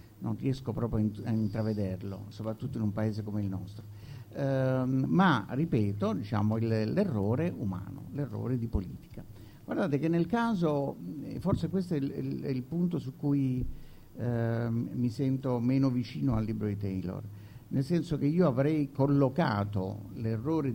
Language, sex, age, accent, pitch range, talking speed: Italian, male, 60-79, native, 110-145 Hz, 150 wpm